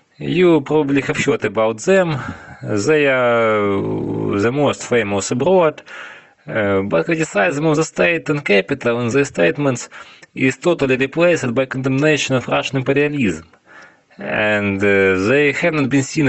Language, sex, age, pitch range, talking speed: English, male, 20-39, 110-145 Hz, 140 wpm